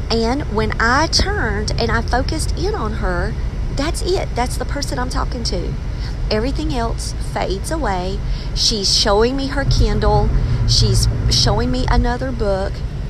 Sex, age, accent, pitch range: female, 40-59, American, 110-135 Hz